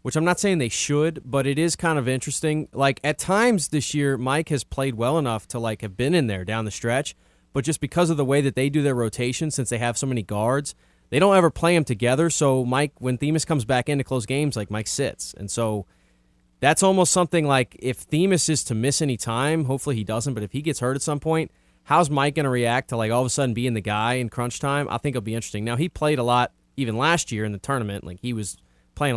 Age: 30-49